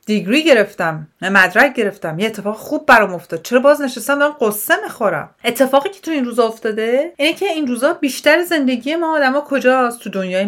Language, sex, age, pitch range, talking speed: Persian, female, 40-59, 190-270 Hz, 185 wpm